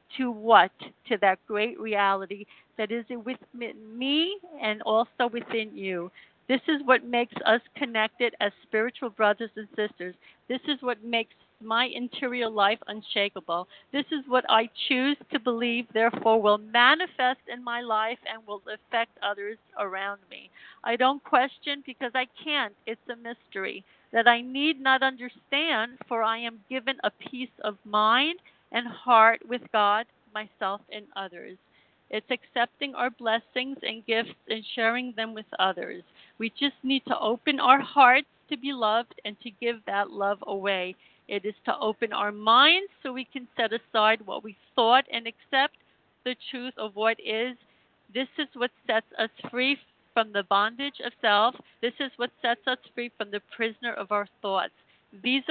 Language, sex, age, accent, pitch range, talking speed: English, female, 50-69, American, 215-255 Hz, 165 wpm